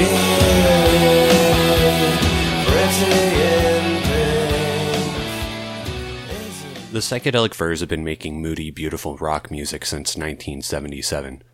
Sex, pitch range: male, 75-95 Hz